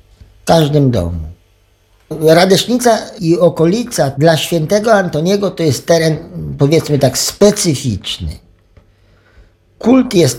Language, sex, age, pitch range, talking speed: Polish, male, 50-69, 120-185 Hz, 100 wpm